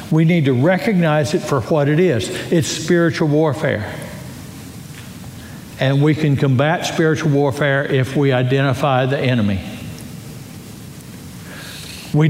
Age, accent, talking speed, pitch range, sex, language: 60-79, American, 115 wpm, 130-160 Hz, male, English